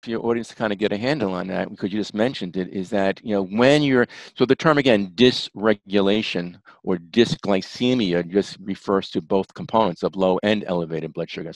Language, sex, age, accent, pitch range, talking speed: English, male, 50-69, American, 95-110 Hz, 210 wpm